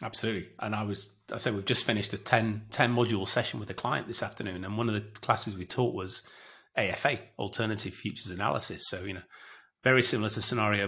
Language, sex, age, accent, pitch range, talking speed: English, male, 30-49, British, 105-120 Hz, 210 wpm